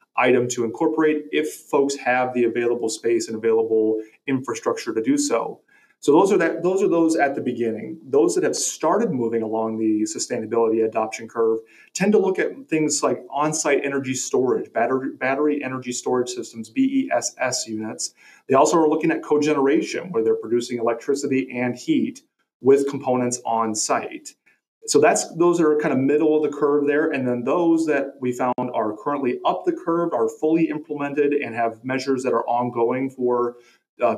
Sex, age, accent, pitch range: male, 30-49, American, 120-155 Hz